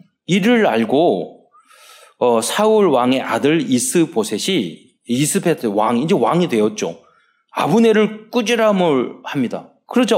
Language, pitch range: Korean, 140-215 Hz